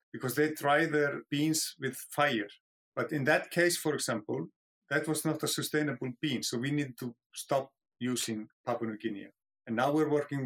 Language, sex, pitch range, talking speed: English, male, 125-150 Hz, 185 wpm